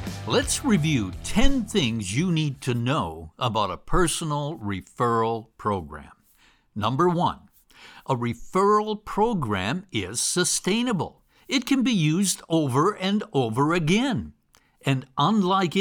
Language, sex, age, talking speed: English, male, 60-79, 115 wpm